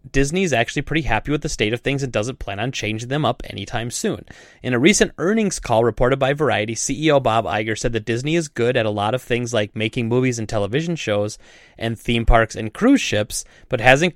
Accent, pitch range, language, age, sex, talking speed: American, 110-140 Hz, English, 20-39, male, 230 wpm